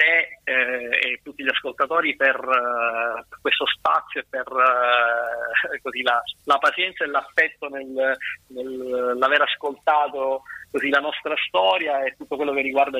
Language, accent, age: Italian, native, 30-49